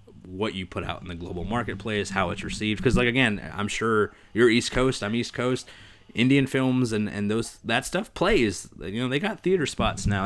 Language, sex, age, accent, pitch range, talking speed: English, male, 20-39, American, 95-115 Hz, 215 wpm